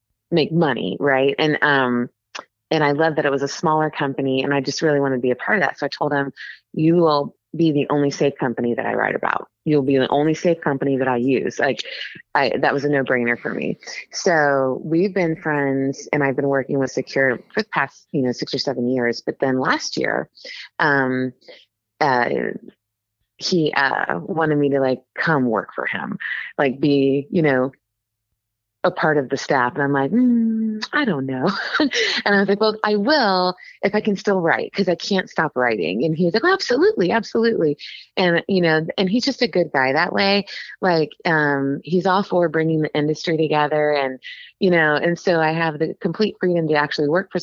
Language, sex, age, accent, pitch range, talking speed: English, female, 30-49, American, 135-175 Hz, 210 wpm